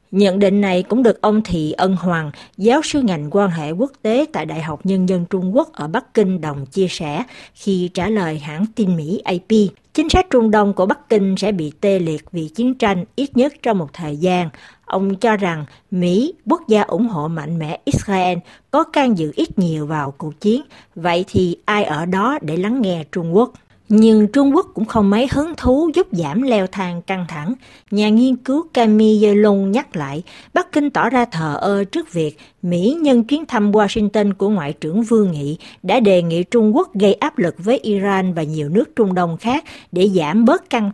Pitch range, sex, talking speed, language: 175-235 Hz, female, 210 wpm, Vietnamese